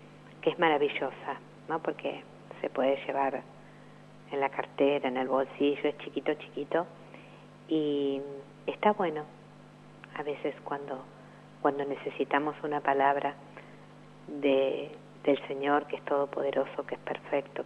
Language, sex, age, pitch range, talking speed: Spanish, female, 50-69, 140-160 Hz, 120 wpm